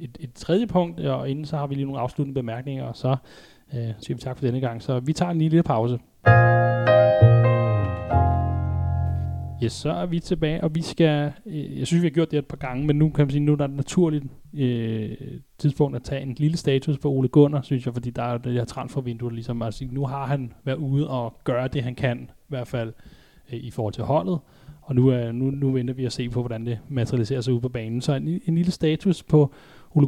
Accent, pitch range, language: native, 120-150 Hz, Danish